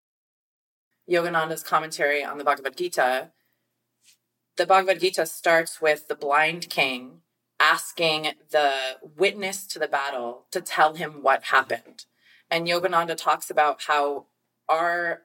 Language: English